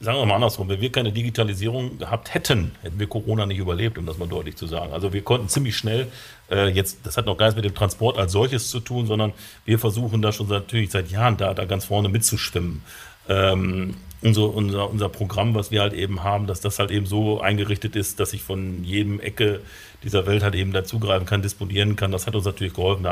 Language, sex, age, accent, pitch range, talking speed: German, male, 50-69, German, 95-110 Hz, 235 wpm